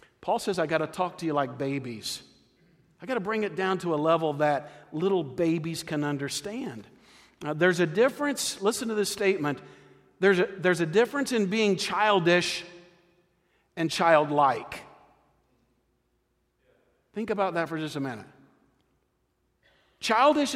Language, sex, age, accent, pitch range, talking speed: English, male, 50-69, American, 140-185 Hz, 140 wpm